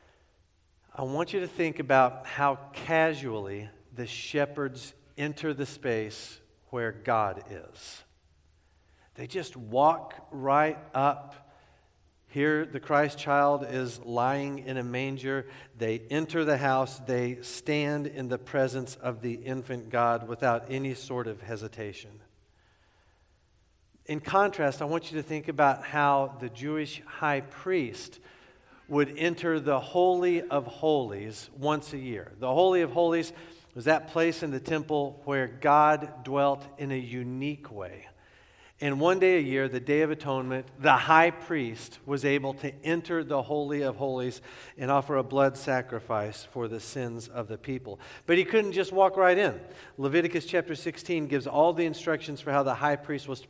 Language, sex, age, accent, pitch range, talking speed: English, male, 50-69, American, 120-150 Hz, 155 wpm